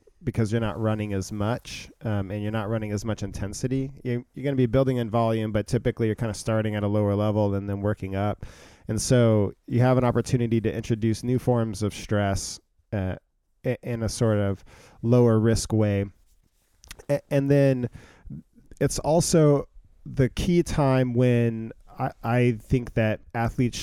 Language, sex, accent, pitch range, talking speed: English, male, American, 105-120 Hz, 175 wpm